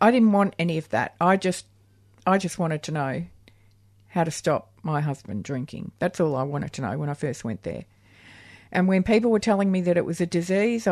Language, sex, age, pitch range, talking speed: English, female, 50-69, 105-180 Hz, 225 wpm